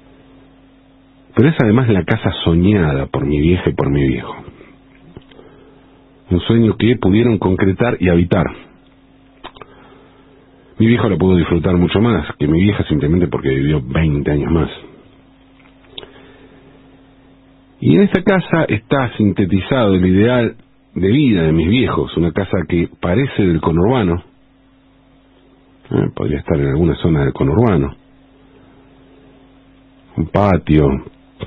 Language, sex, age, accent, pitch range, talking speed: English, male, 40-59, Argentinian, 90-135 Hz, 125 wpm